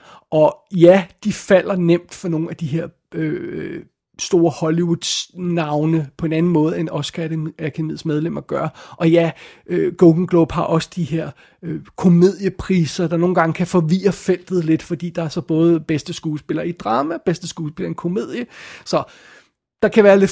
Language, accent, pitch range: Danish, native, 160-185 Hz